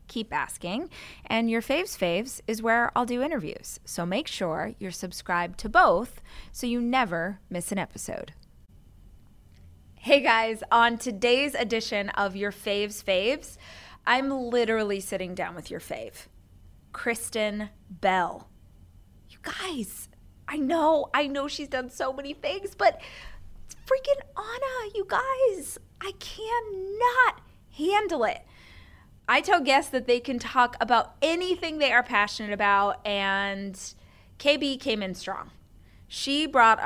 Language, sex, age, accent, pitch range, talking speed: English, female, 20-39, American, 190-270 Hz, 135 wpm